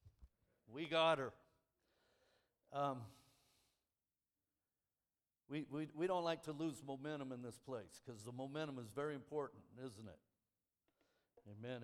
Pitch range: 120-150 Hz